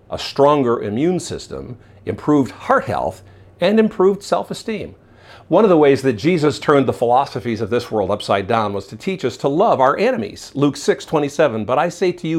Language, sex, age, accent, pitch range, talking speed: English, male, 50-69, American, 105-155 Hz, 195 wpm